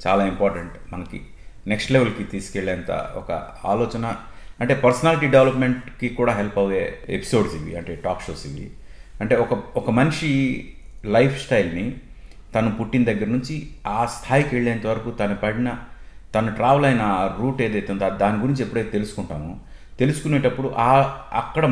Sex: male